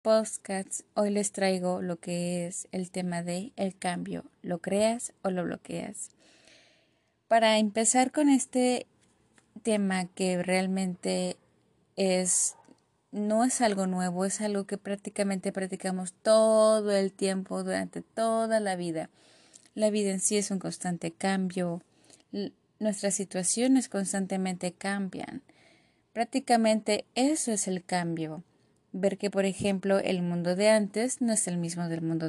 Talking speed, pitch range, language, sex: 130 wpm, 180-215 Hz, Spanish, female